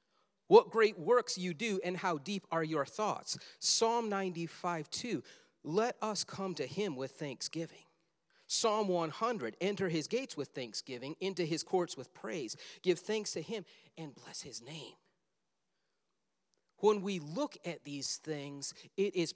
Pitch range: 160-210 Hz